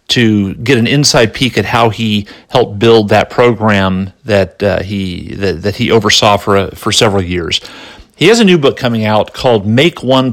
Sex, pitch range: male, 105-130 Hz